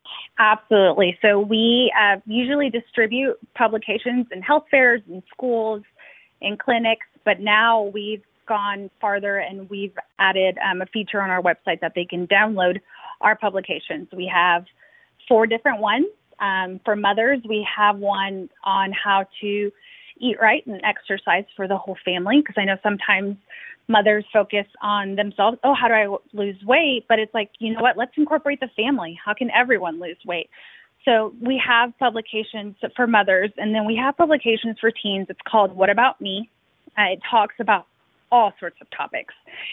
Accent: American